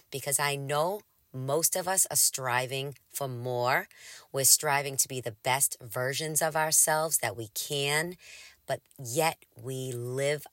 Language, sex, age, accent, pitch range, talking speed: English, female, 40-59, American, 125-165 Hz, 150 wpm